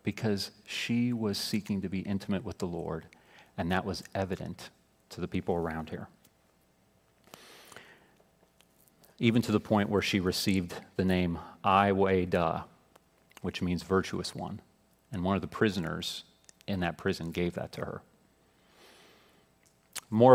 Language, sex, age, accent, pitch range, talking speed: English, male, 40-59, American, 85-115 Hz, 135 wpm